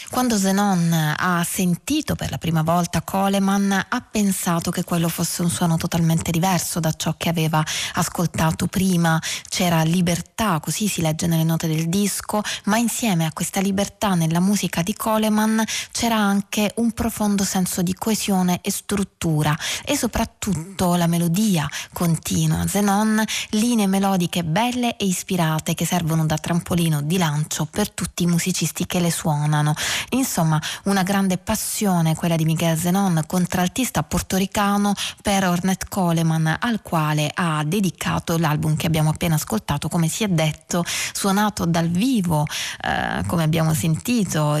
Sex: female